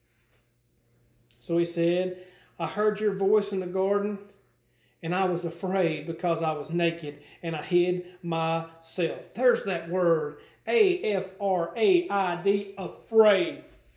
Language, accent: English, American